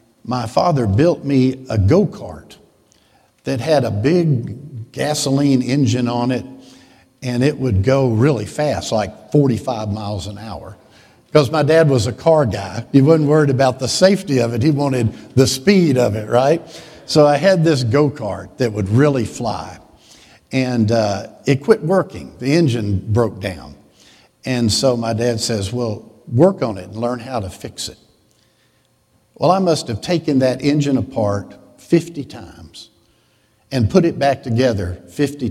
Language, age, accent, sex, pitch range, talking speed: English, 60-79, American, male, 110-145 Hz, 160 wpm